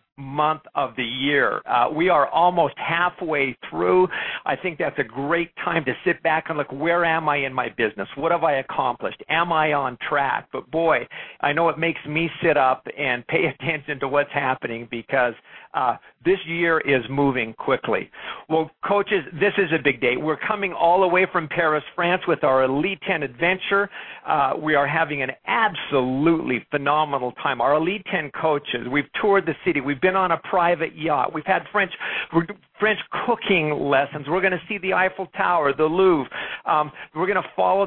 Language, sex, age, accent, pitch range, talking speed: English, male, 50-69, American, 135-175 Hz, 190 wpm